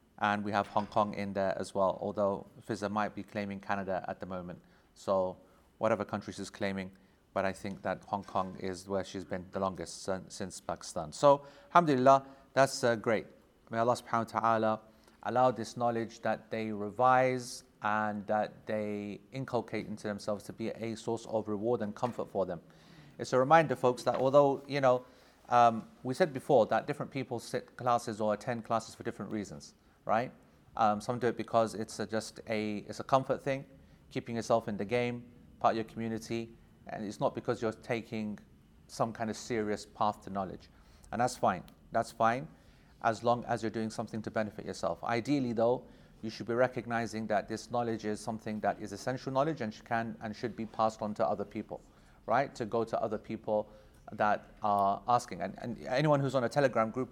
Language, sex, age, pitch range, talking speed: English, male, 30-49, 105-120 Hz, 195 wpm